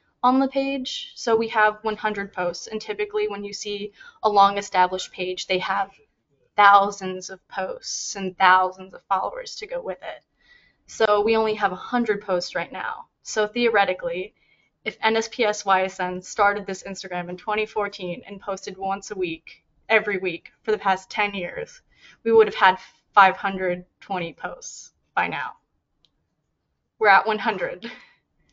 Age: 20-39